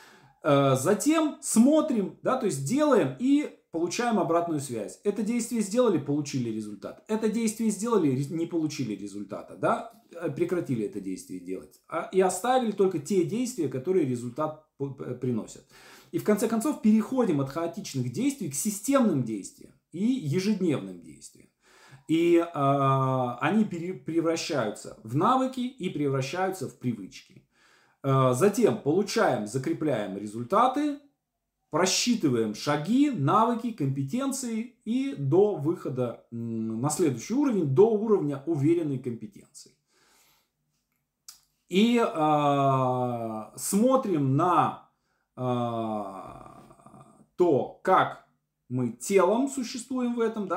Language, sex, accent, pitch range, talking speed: Russian, male, native, 130-220 Hz, 105 wpm